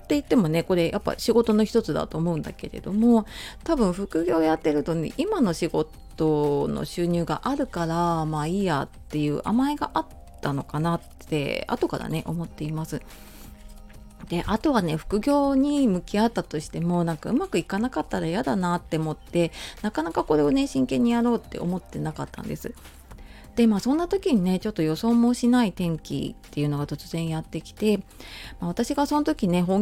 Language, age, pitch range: Japanese, 30-49, 160-220 Hz